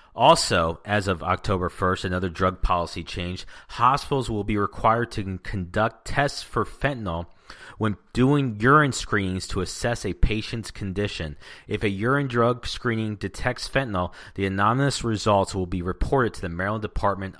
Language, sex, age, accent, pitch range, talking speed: English, male, 30-49, American, 95-120 Hz, 150 wpm